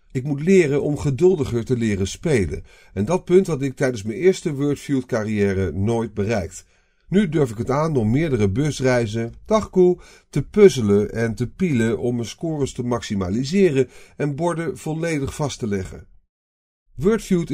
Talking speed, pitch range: 155 wpm, 100-145 Hz